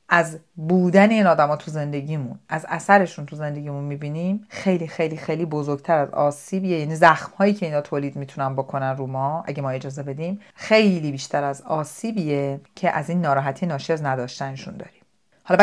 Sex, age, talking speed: female, 40-59, 165 wpm